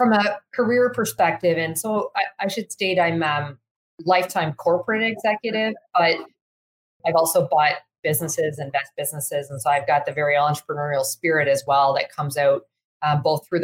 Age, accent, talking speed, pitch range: 30-49, American, 170 wpm, 145-180 Hz